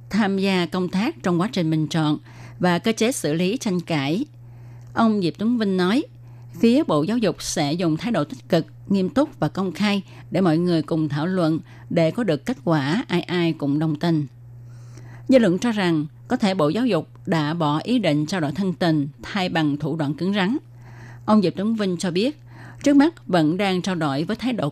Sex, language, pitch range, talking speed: female, Vietnamese, 145-195 Hz, 220 wpm